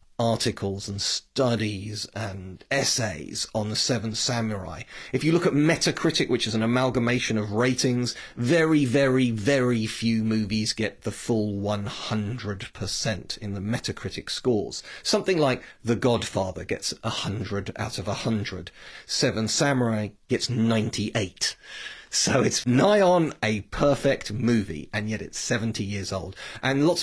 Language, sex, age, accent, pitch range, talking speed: English, male, 40-59, British, 105-130 Hz, 135 wpm